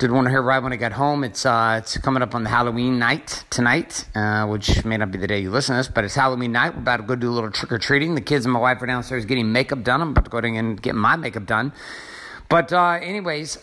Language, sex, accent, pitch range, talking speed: English, male, American, 115-140 Hz, 300 wpm